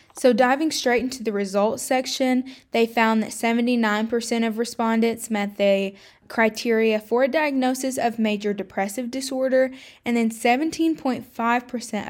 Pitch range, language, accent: 210-260 Hz, English, American